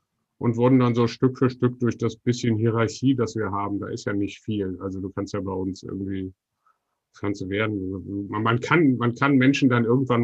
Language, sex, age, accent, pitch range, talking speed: German, male, 50-69, German, 110-140 Hz, 210 wpm